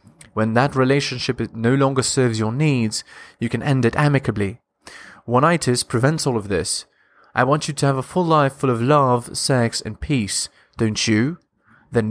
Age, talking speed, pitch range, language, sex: 20-39, 175 wpm, 115-145 Hz, English, male